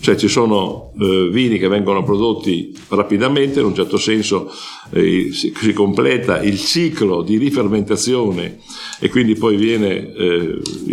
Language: English